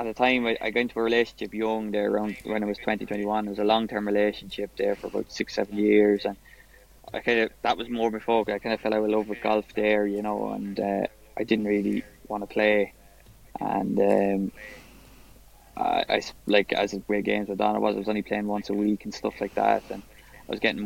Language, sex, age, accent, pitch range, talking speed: English, male, 20-39, Irish, 100-110 Hz, 245 wpm